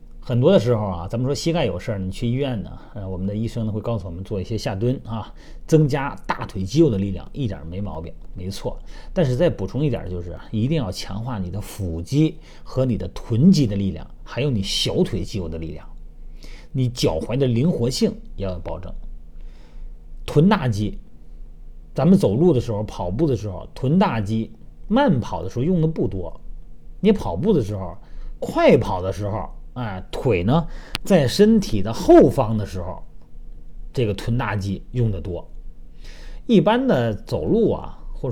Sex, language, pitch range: male, Chinese, 90-150 Hz